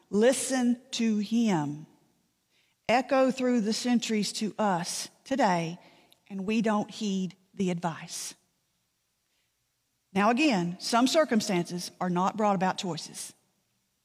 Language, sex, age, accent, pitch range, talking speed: English, female, 40-59, American, 190-255 Hz, 105 wpm